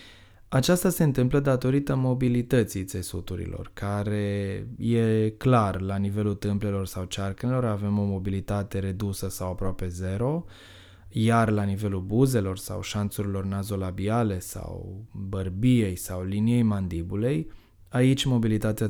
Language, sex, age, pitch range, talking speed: Romanian, male, 20-39, 95-120 Hz, 110 wpm